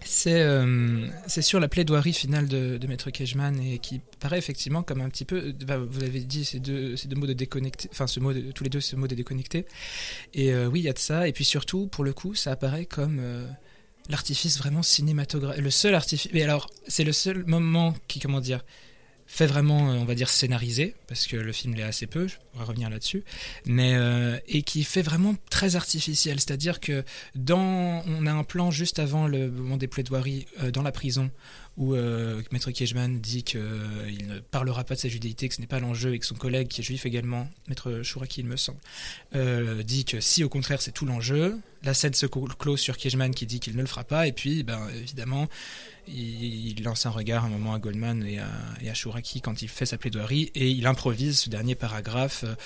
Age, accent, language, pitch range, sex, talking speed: 20-39, French, French, 120-150 Hz, male, 220 wpm